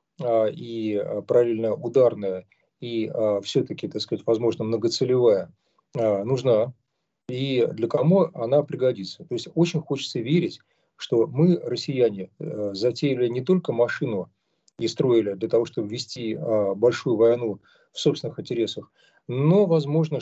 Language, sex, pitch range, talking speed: Russian, male, 115-155 Hz, 120 wpm